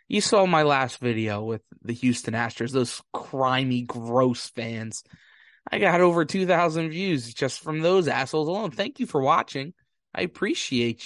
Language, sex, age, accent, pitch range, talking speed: English, male, 20-39, American, 130-185 Hz, 155 wpm